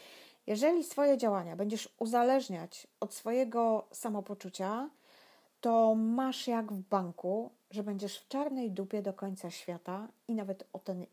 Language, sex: Polish, female